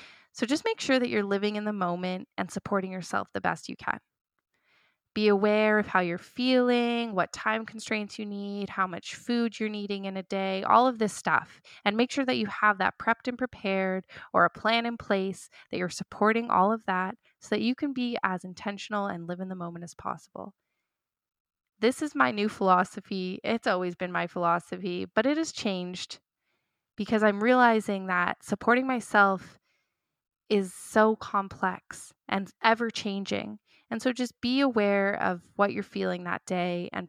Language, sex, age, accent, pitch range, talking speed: English, female, 20-39, American, 190-230 Hz, 185 wpm